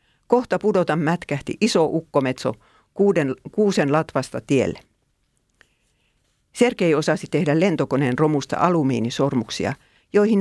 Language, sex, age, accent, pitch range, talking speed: Finnish, female, 50-69, native, 135-190 Hz, 90 wpm